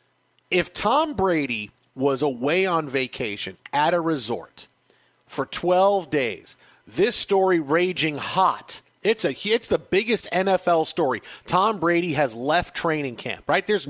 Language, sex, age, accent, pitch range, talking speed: English, male, 40-59, American, 165-195 Hz, 140 wpm